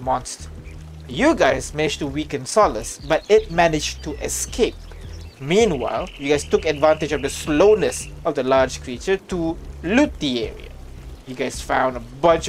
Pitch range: 100-165 Hz